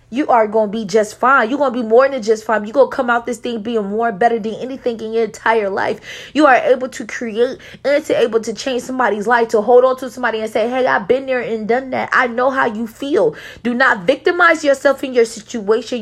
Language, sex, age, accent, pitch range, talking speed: English, female, 20-39, American, 175-235 Hz, 260 wpm